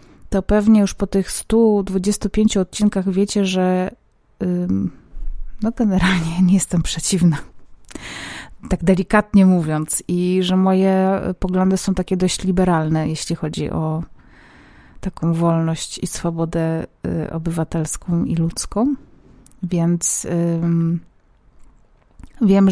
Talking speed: 100 wpm